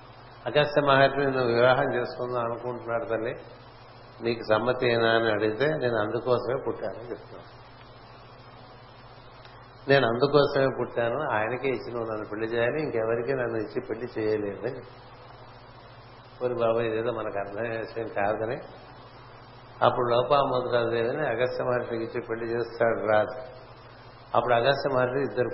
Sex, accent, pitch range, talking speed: male, native, 115-125 Hz, 105 wpm